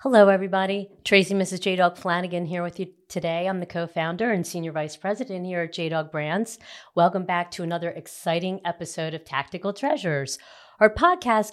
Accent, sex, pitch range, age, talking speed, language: American, female, 170-205 Hz, 40-59, 165 wpm, English